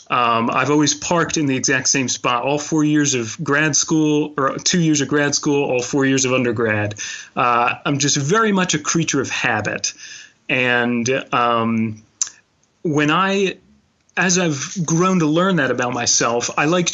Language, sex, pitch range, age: English, male, 125-165 Hz, 30-49